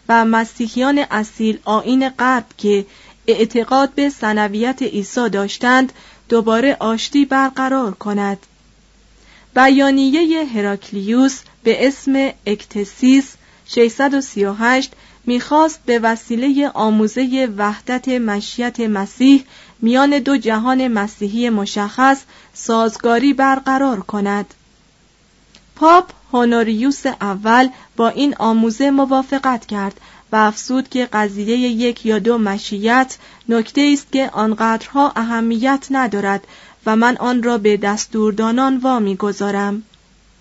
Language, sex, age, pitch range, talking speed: Persian, female, 30-49, 215-265 Hz, 100 wpm